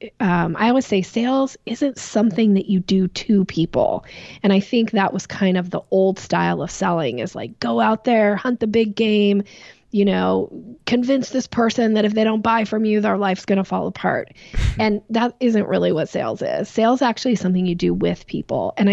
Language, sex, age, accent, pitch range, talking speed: English, female, 20-39, American, 180-220 Hz, 210 wpm